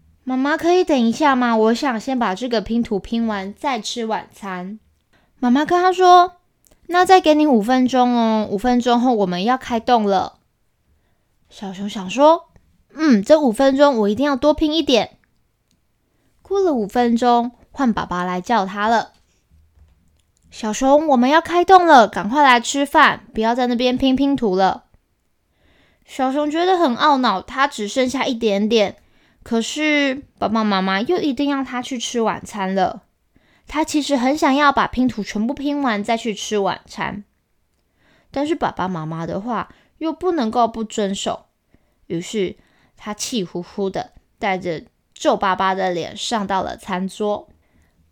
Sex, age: female, 20-39